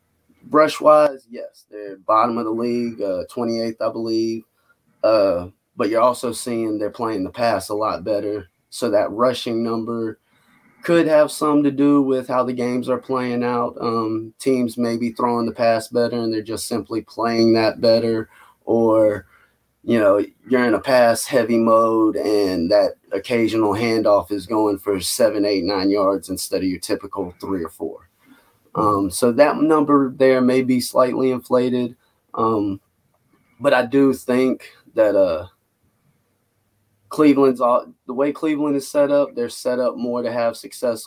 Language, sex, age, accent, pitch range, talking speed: English, male, 20-39, American, 110-125 Hz, 160 wpm